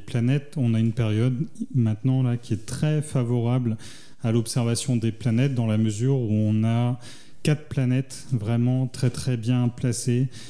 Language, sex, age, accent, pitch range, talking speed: French, male, 30-49, French, 115-140 Hz, 160 wpm